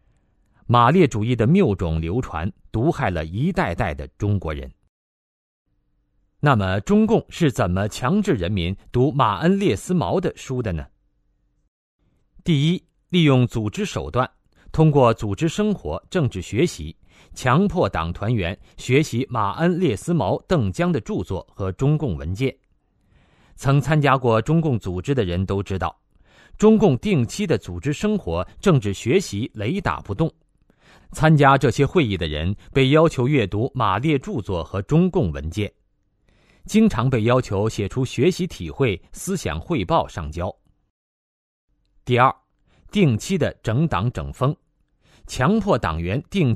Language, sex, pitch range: Chinese, male, 95-160 Hz